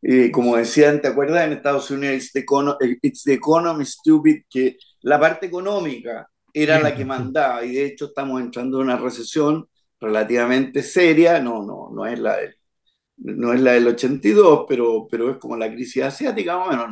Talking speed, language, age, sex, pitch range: 180 wpm, Spanish, 50-69, male, 130-160 Hz